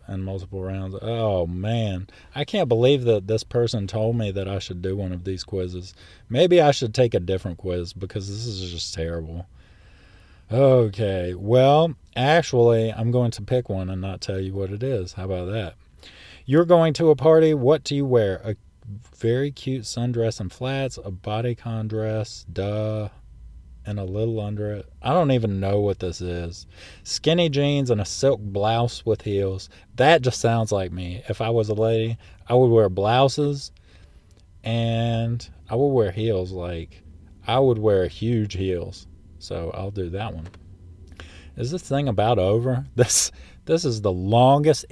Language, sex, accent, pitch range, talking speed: English, male, American, 95-125 Hz, 175 wpm